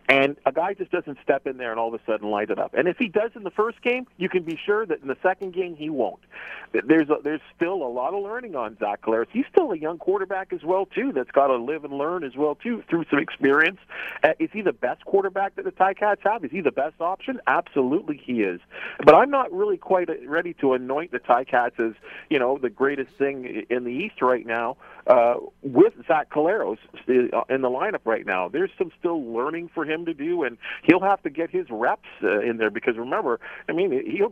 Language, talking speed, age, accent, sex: English, 240 wpm, 50-69, American, male